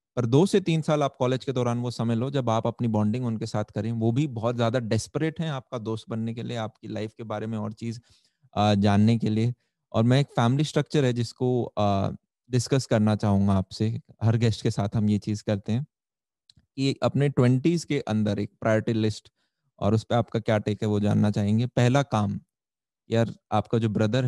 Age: 20-39